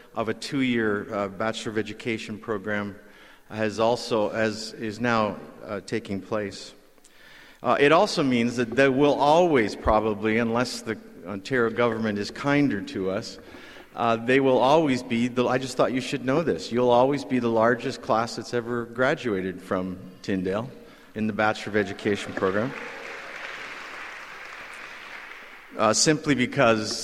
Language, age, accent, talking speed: English, 50-69, American, 140 wpm